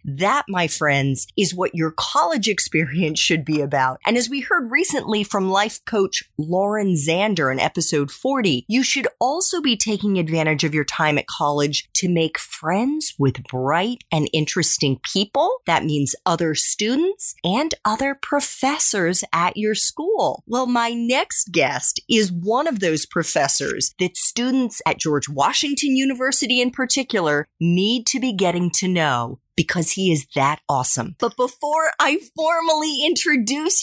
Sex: female